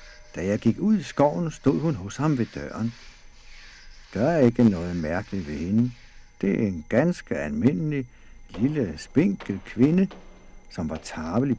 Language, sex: Danish, male